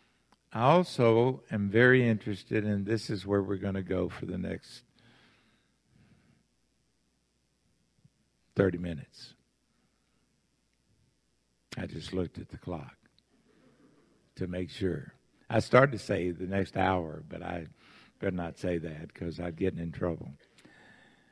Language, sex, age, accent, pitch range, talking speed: English, male, 60-79, American, 95-120 Hz, 125 wpm